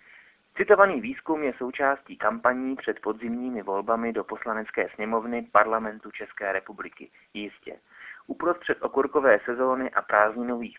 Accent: native